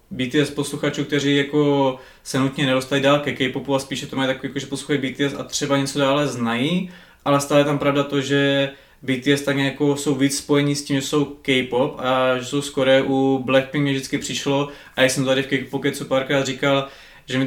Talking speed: 215 wpm